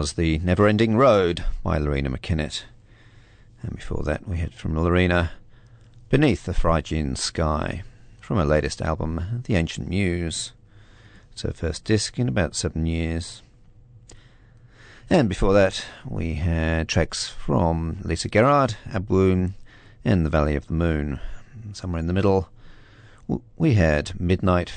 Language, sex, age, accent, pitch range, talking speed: English, male, 40-59, British, 85-115 Hz, 135 wpm